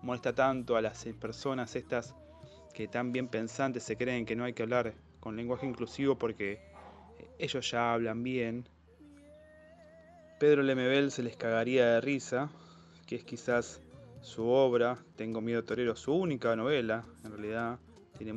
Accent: Argentinian